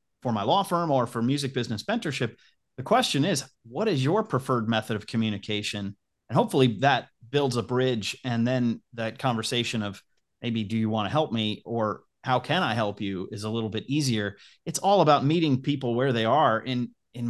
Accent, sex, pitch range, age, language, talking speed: American, male, 115-145 Hz, 30-49, English, 200 wpm